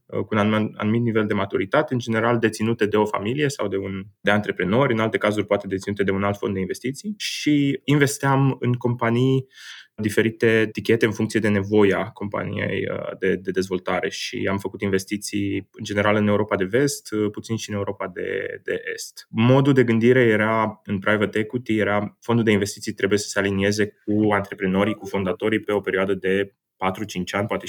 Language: Romanian